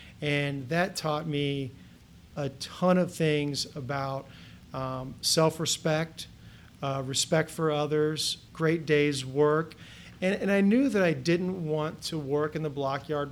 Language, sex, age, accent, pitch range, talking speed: English, male, 40-59, American, 145-170 Hz, 140 wpm